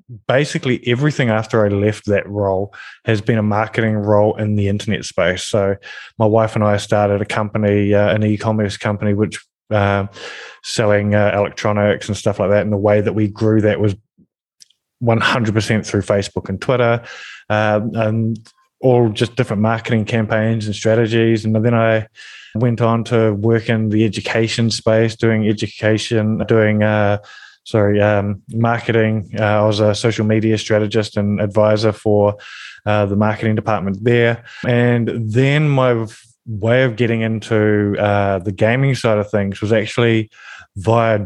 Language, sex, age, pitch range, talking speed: English, male, 20-39, 105-115 Hz, 155 wpm